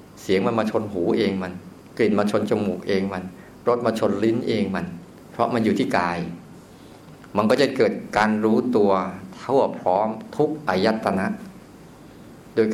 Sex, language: male, Thai